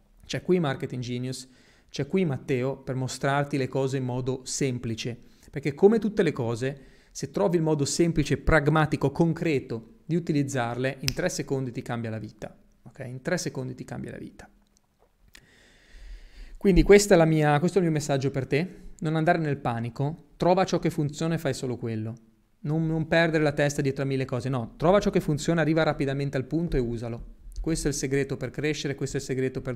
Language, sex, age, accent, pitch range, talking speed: Italian, male, 30-49, native, 130-160 Hz, 195 wpm